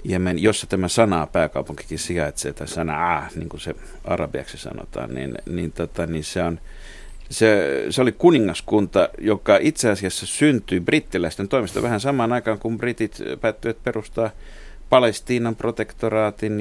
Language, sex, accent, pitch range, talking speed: Finnish, male, native, 85-100 Hz, 140 wpm